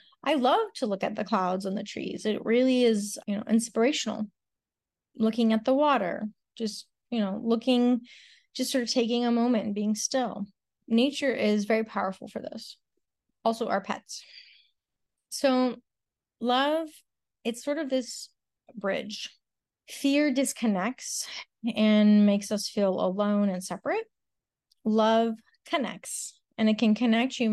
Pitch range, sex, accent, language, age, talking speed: 205-250 Hz, female, American, English, 30-49, 140 wpm